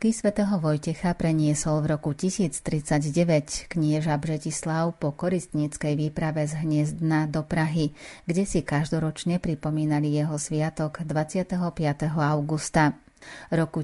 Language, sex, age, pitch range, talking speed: Slovak, female, 30-49, 150-165 Hz, 105 wpm